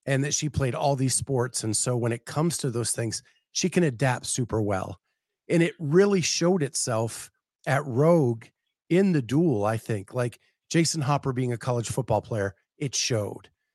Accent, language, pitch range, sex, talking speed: American, English, 120-150 Hz, male, 185 wpm